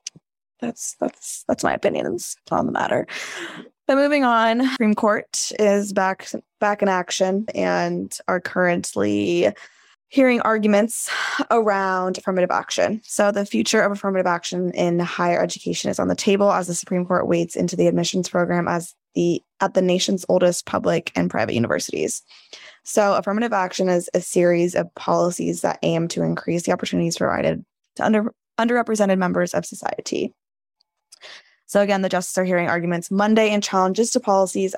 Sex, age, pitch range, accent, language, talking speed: female, 10-29, 175-205 Hz, American, English, 155 wpm